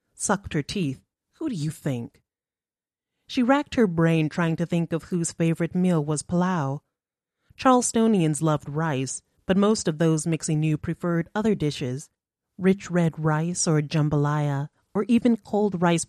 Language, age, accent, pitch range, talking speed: English, 30-49, American, 150-185 Hz, 155 wpm